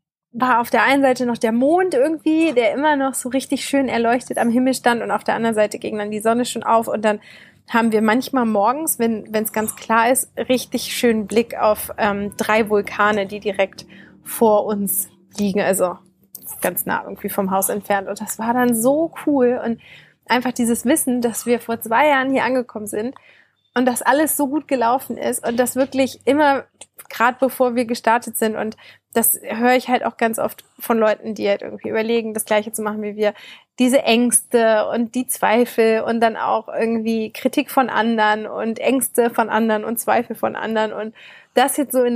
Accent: German